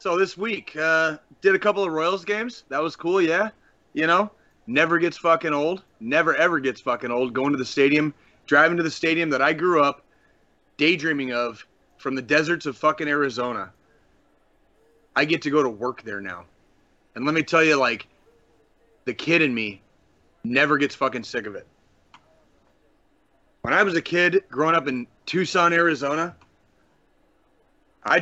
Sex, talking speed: male, 170 wpm